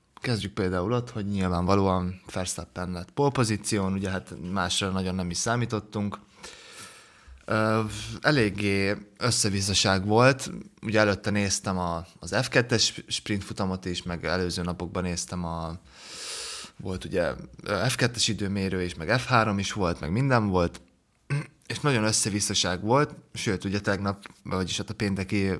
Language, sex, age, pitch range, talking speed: Hungarian, male, 20-39, 90-110 Hz, 125 wpm